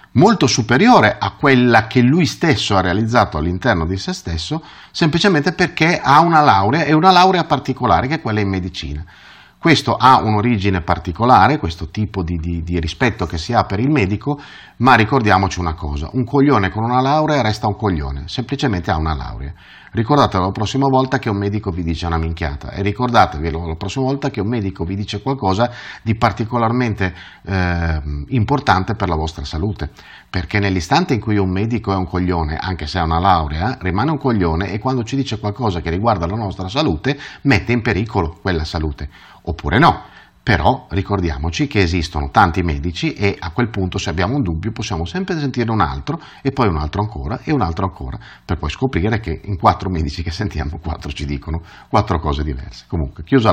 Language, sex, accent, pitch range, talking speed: Italian, male, native, 85-125 Hz, 190 wpm